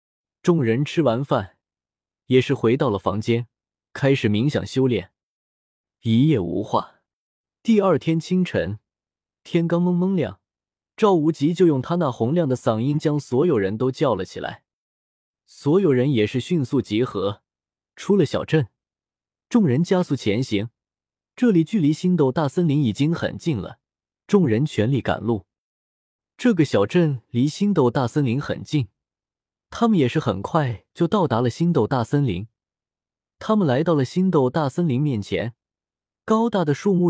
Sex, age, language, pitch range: male, 20-39, Chinese, 110-170 Hz